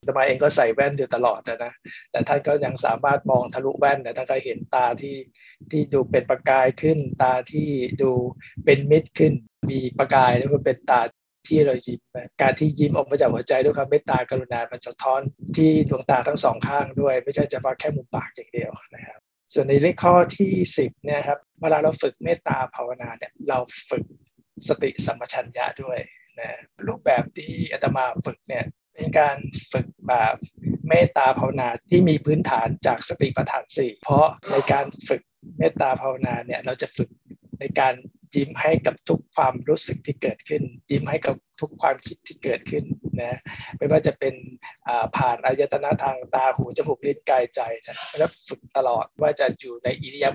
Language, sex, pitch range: Thai, male, 130-155 Hz